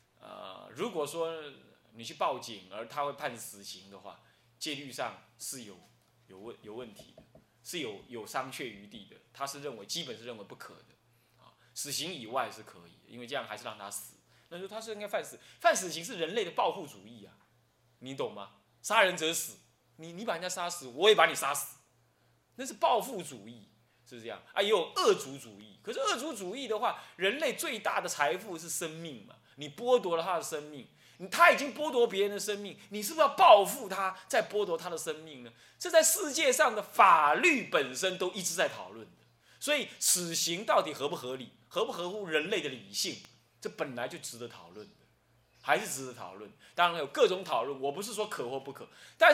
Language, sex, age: Chinese, male, 20-39